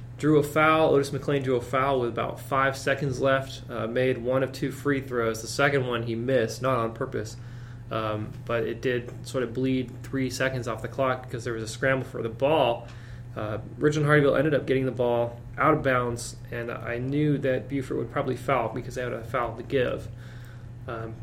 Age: 20-39